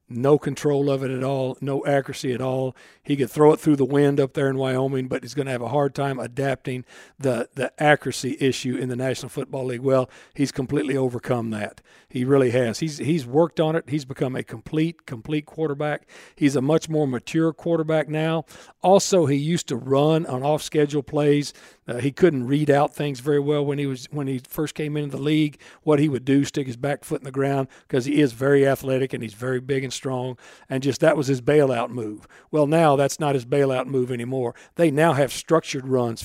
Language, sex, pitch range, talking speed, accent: English, male, 130-150 Hz, 220 wpm, American